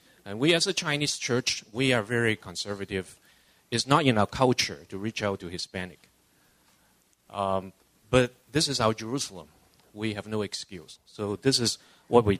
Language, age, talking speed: English, 30-49, 170 wpm